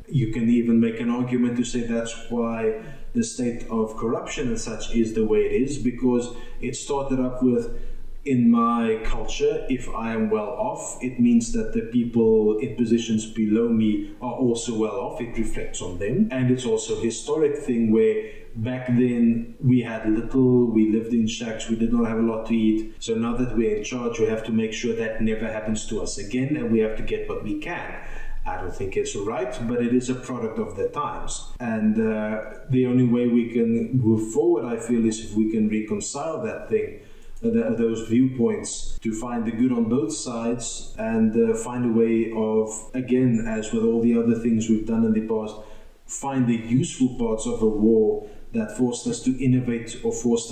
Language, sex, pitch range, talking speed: English, male, 110-125 Hz, 205 wpm